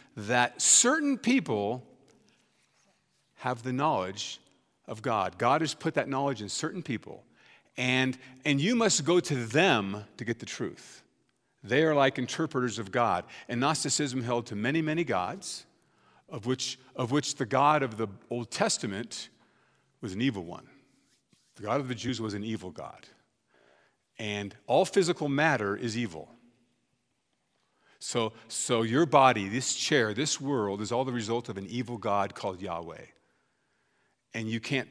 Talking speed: 155 wpm